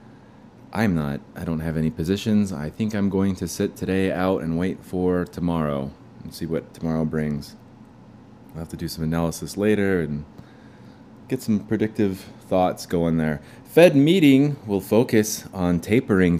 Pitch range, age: 90-110 Hz, 30-49